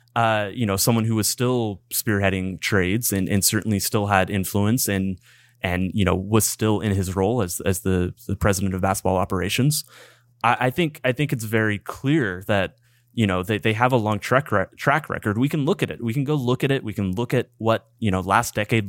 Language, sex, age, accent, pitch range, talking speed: English, male, 20-39, American, 95-120 Hz, 230 wpm